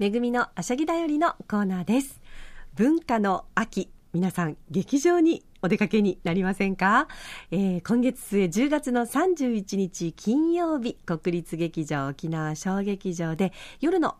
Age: 40-59